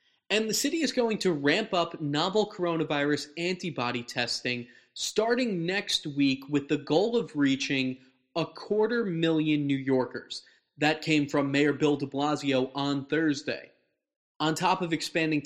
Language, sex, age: English, male, 20-39